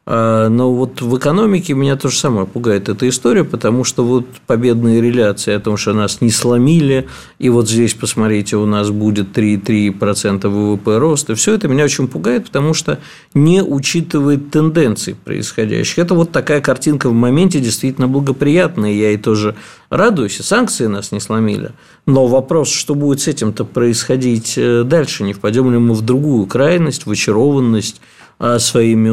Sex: male